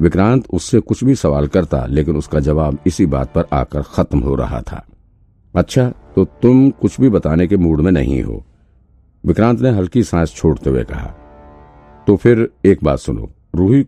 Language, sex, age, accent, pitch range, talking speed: Hindi, male, 50-69, native, 75-95 Hz, 175 wpm